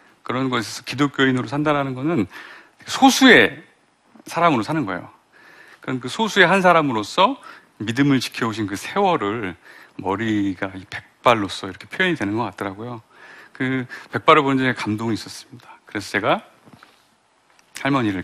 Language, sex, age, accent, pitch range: Korean, male, 40-59, native, 105-160 Hz